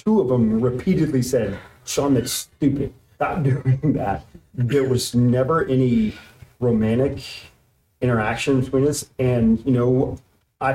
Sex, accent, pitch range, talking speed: male, American, 120-145 Hz, 130 wpm